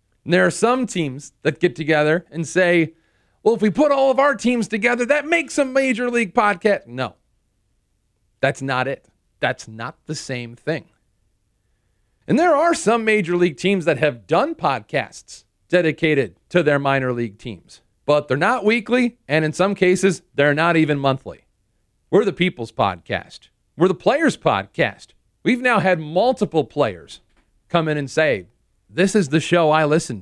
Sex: male